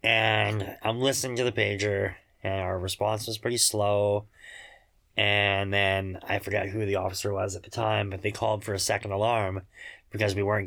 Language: English